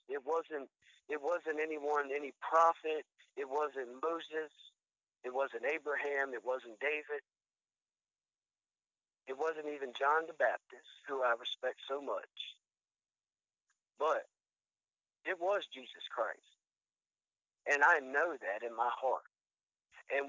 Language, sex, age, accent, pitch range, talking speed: English, male, 50-69, American, 105-160 Hz, 120 wpm